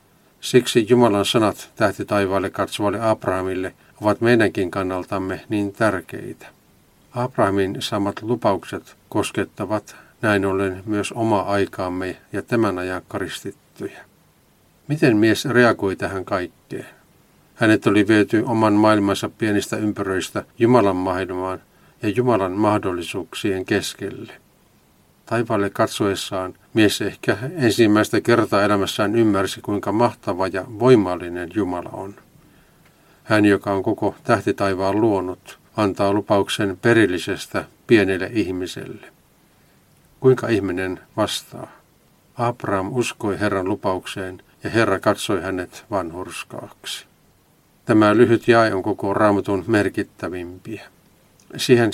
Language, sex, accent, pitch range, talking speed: Finnish, male, native, 95-110 Hz, 100 wpm